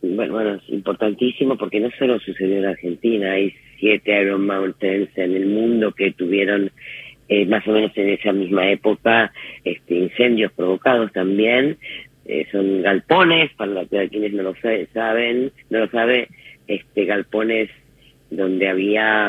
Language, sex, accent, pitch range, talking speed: Spanish, female, Argentinian, 95-110 Hz, 140 wpm